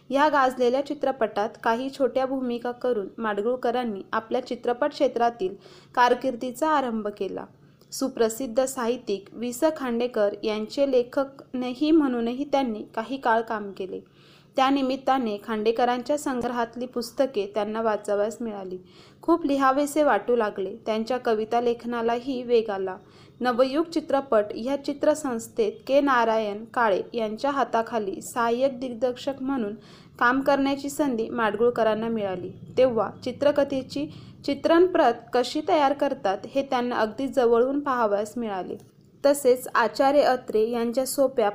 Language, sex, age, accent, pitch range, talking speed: Marathi, female, 20-39, native, 225-270 Hz, 110 wpm